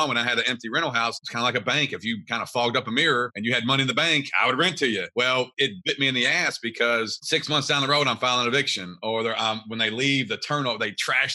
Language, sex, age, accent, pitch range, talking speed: English, male, 40-59, American, 115-140 Hz, 310 wpm